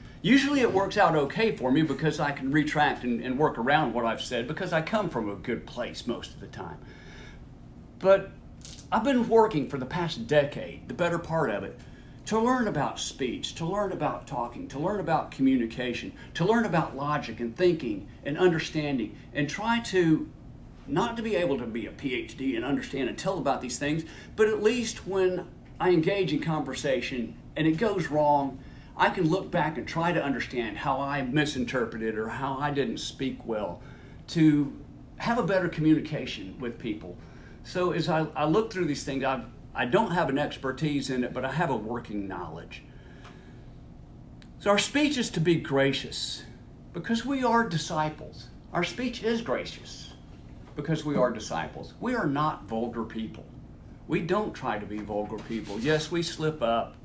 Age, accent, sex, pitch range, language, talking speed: 50-69, American, male, 130-180 Hz, English, 180 wpm